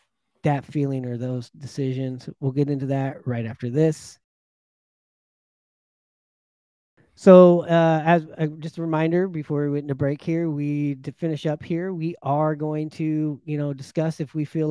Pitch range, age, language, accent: 130-165 Hz, 30-49, English, American